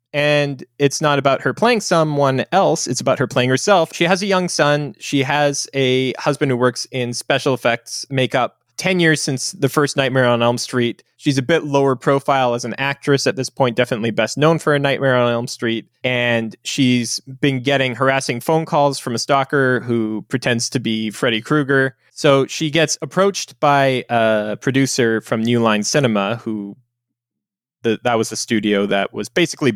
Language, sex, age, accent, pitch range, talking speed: English, male, 20-39, American, 110-140 Hz, 190 wpm